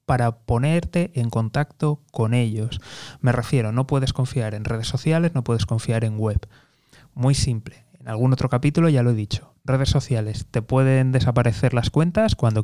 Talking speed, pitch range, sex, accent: 175 wpm, 115-145 Hz, male, Spanish